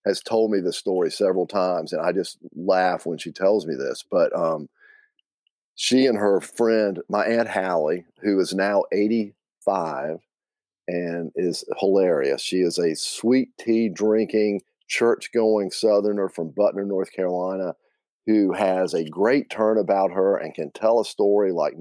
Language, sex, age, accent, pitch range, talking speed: English, male, 40-59, American, 95-120 Hz, 155 wpm